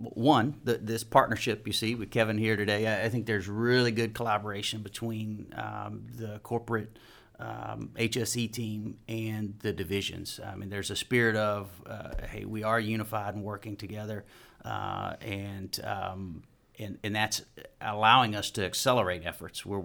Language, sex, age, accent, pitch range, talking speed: English, male, 40-59, American, 105-115 Hz, 160 wpm